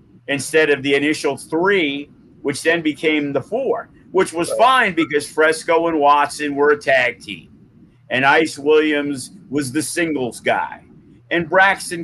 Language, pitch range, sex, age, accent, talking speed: English, 145-170 Hz, male, 50-69, American, 150 wpm